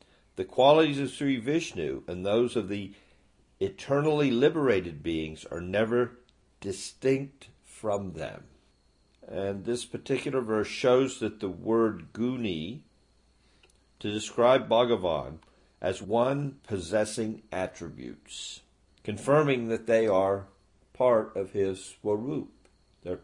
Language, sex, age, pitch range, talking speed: English, male, 50-69, 90-120 Hz, 110 wpm